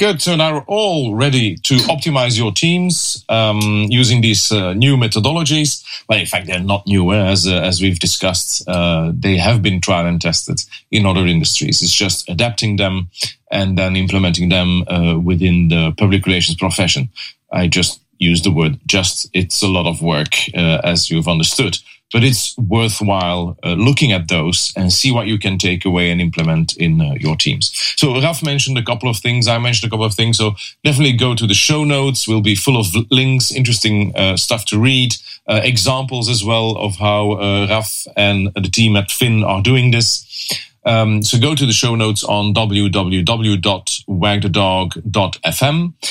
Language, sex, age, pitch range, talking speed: English, male, 30-49, 95-120 Hz, 185 wpm